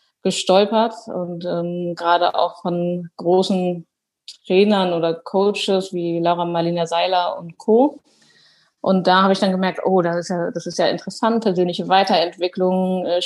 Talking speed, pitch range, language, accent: 150 wpm, 175-205 Hz, German, German